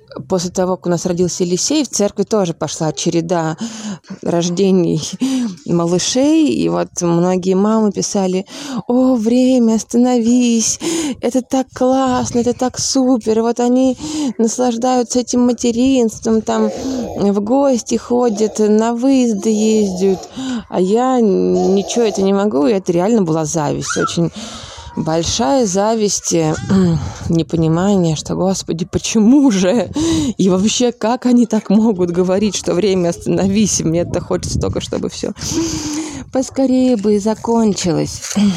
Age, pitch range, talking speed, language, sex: 20-39, 170-245 Hz, 125 wpm, Russian, female